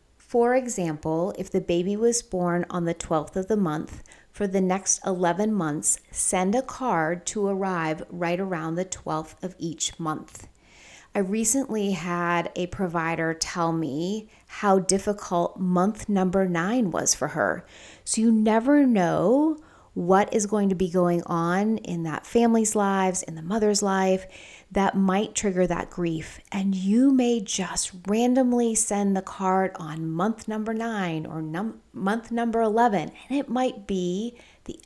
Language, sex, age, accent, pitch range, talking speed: English, female, 30-49, American, 170-210 Hz, 155 wpm